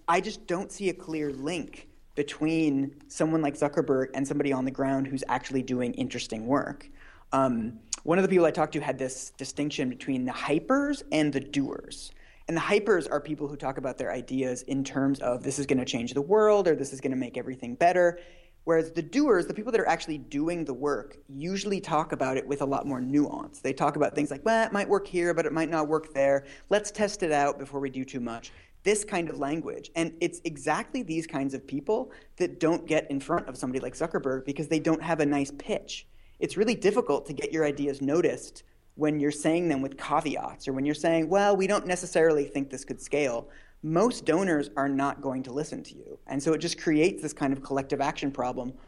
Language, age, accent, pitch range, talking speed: English, 30-49, American, 135-165 Hz, 225 wpm